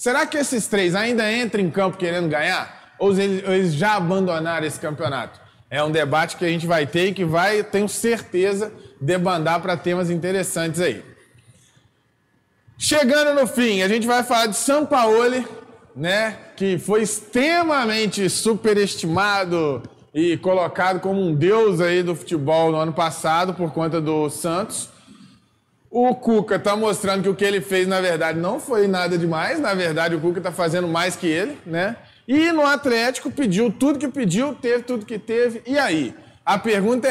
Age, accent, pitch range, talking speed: 20-39, Brazilian, 165-225 Hz, 170 wpm